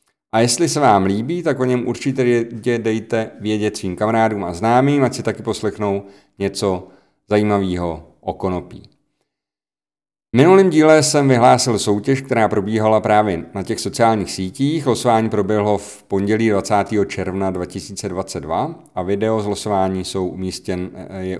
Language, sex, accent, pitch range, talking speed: Czech, male, native, 95-130 Hz, 135 wpm